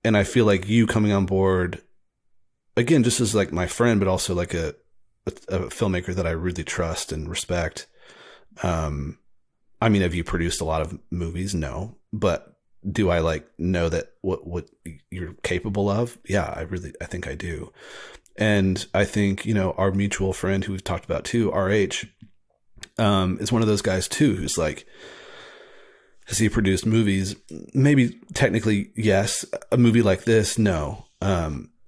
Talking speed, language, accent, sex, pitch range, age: 170 wpm, English, American, male, 90-110 Hz, 30-49